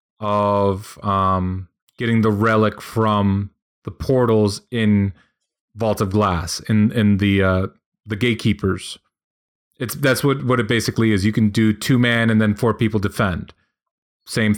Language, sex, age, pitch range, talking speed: English, male, 30-49, 105-120 Hz, 150 wpm